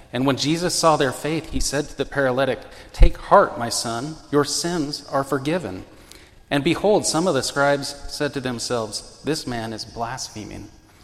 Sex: male